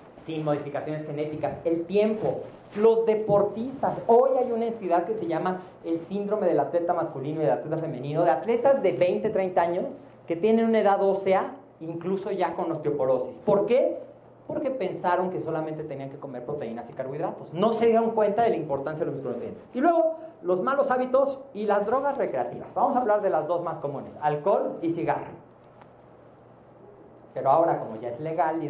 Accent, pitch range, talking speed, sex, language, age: Mexican, 165-230 Hz, 180 wpm, male, Spanish, 40-59